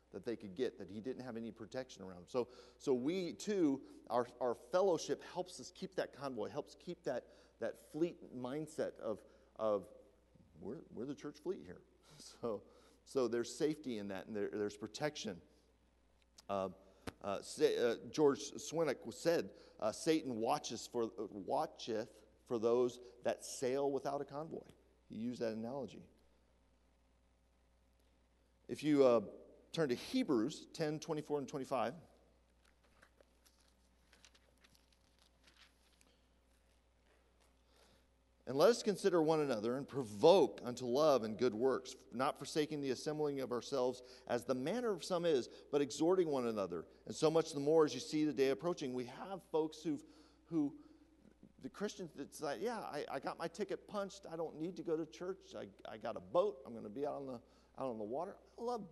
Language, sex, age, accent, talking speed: English, male, 40-59, American, 165 wpm